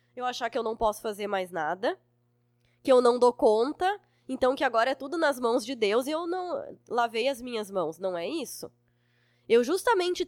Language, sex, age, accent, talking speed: Portuguese, female, 20-39, Brazilian, 205 wpm